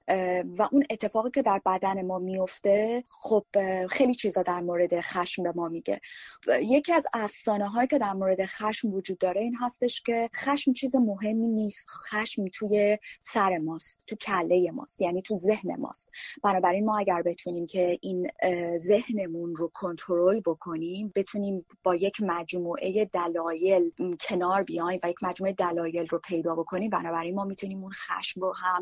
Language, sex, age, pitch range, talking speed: Persian, female, 30-49, 180-220 Hz, 155 wpm